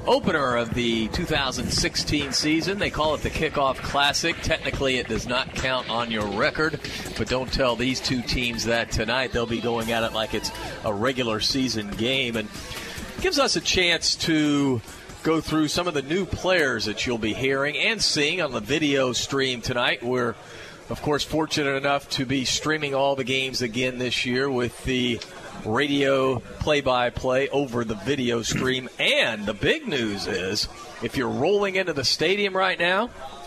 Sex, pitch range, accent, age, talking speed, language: male, 120-155 Hz, American, 40-59, 175 wpm, English